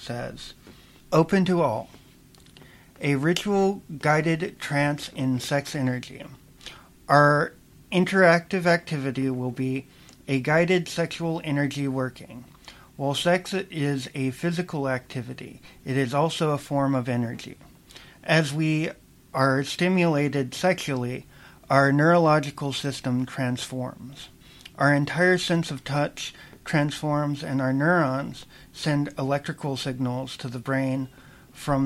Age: 50-69